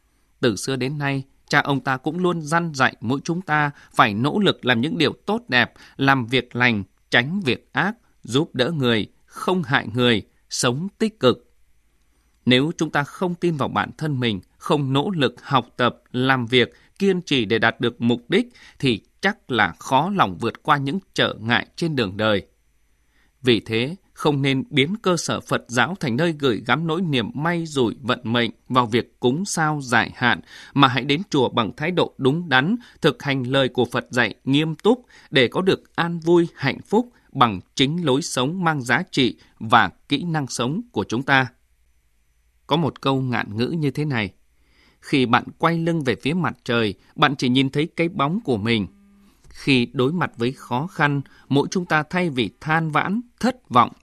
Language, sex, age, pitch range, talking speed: Vietnamese, male, 20-39, 120-160 Hz, 195 wpm